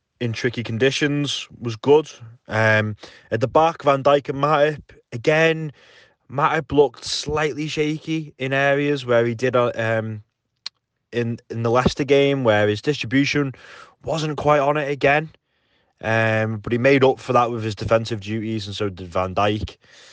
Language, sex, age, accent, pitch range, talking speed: English, male, 20-39, British, 110-135 Hz, 160 wpm